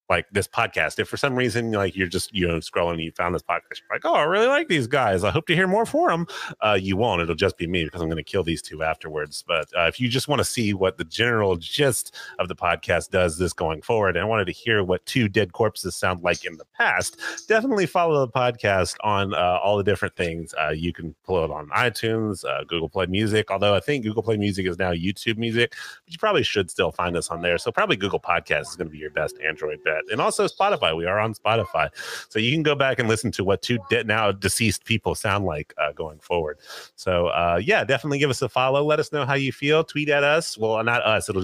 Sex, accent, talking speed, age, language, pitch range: male, American, 260 wpm, 30-49, English, 90-130 Hz